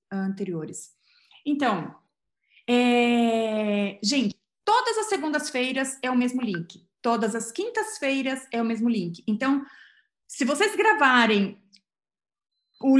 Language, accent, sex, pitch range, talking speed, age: Portuguese, Brazilian, female, 225-285 Hz, 105 wpm, 30-49